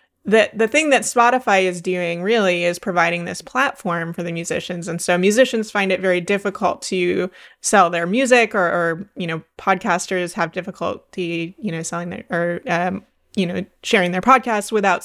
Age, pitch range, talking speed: 20-39, 180-220 Hz, 180 wpm